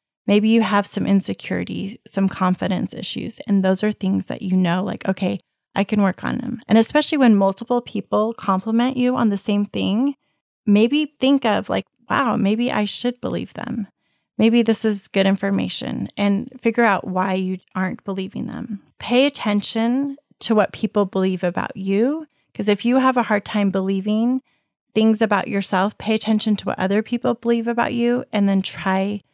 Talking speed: 180 wpm